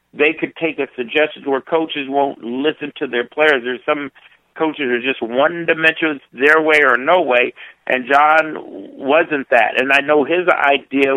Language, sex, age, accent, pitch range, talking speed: English, male, 50-69, American, 130-160 Hz, 175 wpm